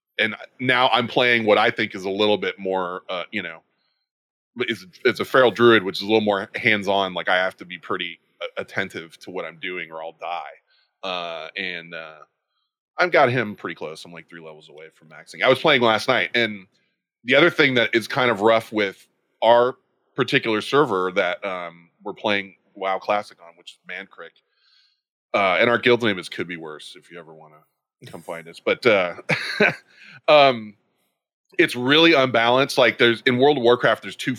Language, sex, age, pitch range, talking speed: English, male, 20-39, 95-130 Hz, 200 wpm